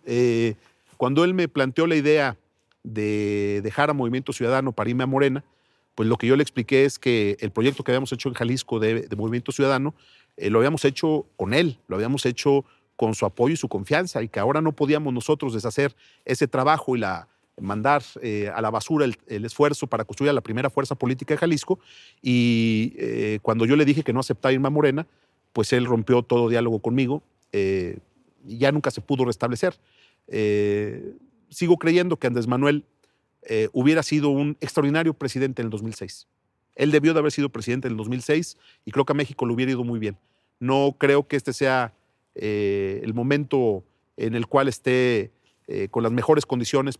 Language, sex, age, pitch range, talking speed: Spanish, male, 40-59, 115-145 Hz, 195 wpm